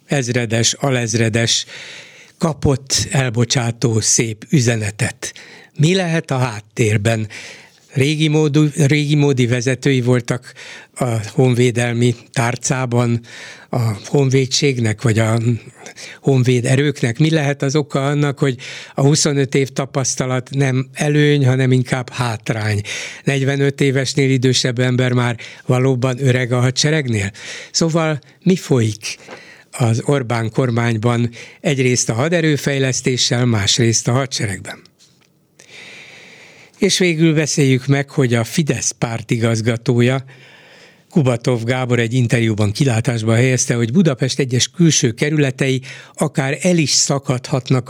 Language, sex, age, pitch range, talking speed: Hungarian, male, 60-79, 120-145 Hz, 105 wpm